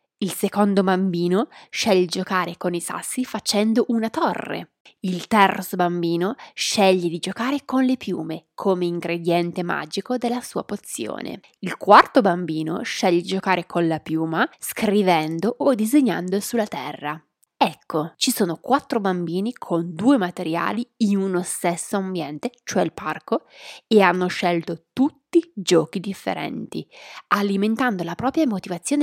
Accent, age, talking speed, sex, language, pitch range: native, 20-39, 135 wpm, female, Italian, 175-235 Hz